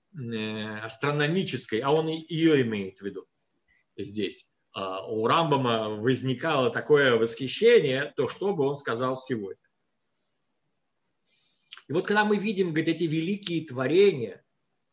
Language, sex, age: Russian, male, 50-69